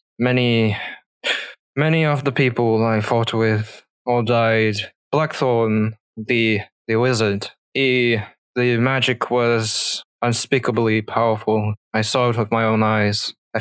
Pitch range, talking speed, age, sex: 110-130 Hz, 125 wpm, 20-39, male